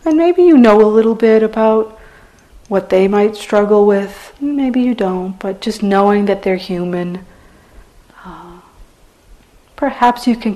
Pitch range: 185-220 Hz